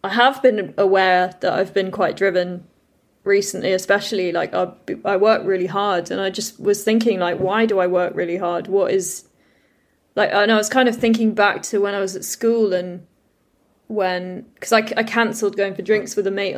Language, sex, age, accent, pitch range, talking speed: English, female, 20-39, British, 185-220 Hz, 205 wpm